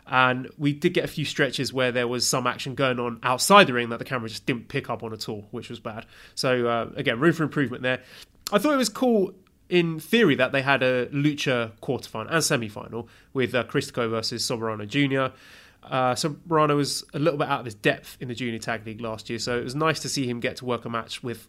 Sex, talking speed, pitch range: male, 245 wpm, 120-155 Hz